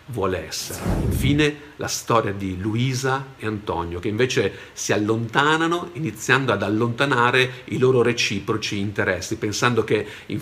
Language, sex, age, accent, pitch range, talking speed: Italian, male, 50-69, native, 105-130 Hz, 130 wpm